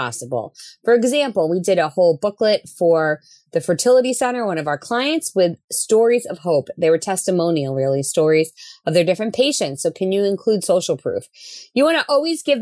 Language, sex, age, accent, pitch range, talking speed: English, female, 30-49, American, 180-285 Hz, 185 wpm